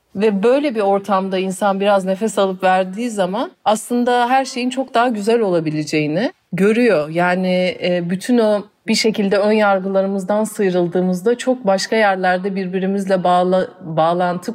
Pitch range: 180-245 Hz